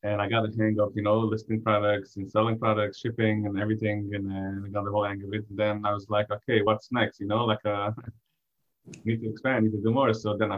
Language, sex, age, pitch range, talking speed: English, male, 20-39, 105-115 Hz, 265 wpm